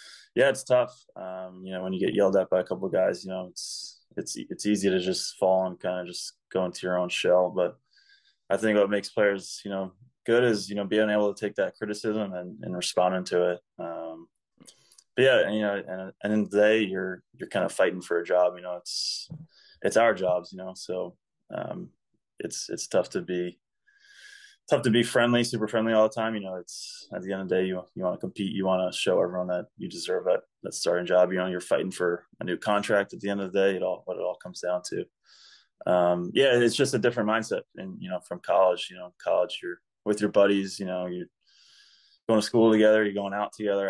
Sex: male